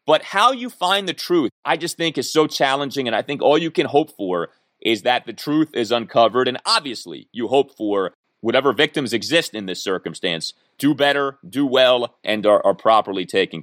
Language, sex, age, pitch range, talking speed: English, male, 30-49, 110-165 Hz, 205 wpm